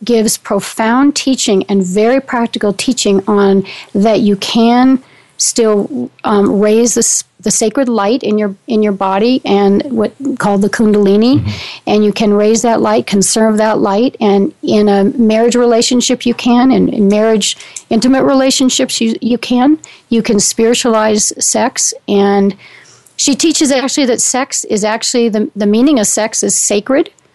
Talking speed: 155 wpm